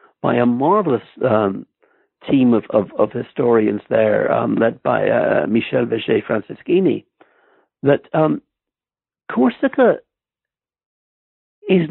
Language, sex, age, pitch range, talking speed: English, male, 60-79, 125-200 Hz, 105 wpm